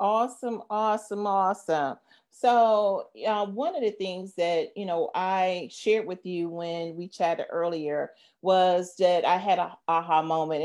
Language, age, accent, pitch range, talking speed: English, 40-59, American, 160-185 Hz, 150 wpm